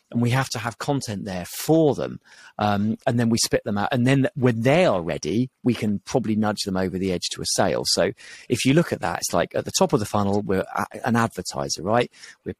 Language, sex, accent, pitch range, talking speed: English, male, British, 95-125 Hz, 250 wpm